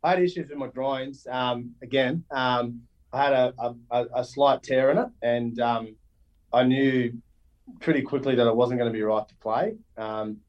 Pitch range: 110-130 Hz